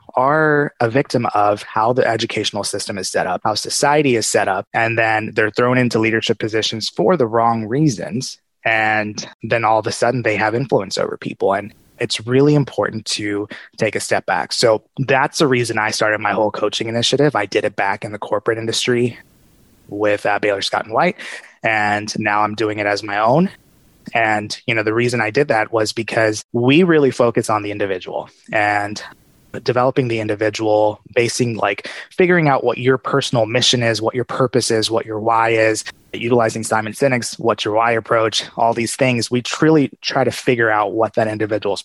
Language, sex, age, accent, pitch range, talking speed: English, male, 20-39, American, 110-130 Hz, 195 wpm